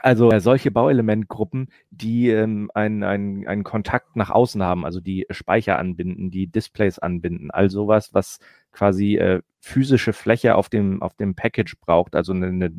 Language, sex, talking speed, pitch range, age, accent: German, male, 165 wpm, 95-110 Hz, 30-49, German